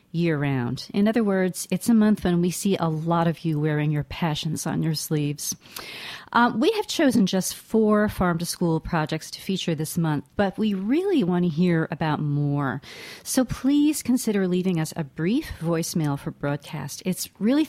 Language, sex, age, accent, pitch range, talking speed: English, female, 50-69, American, 155-205 Hz, 185 wpm